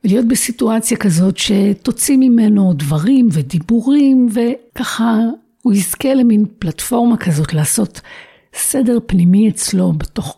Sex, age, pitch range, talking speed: female, 60-79, 165-245 Hz, 105 wpm